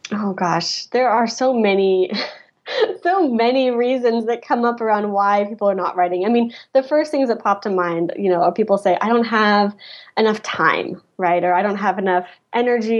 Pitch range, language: 195-250 Hz, English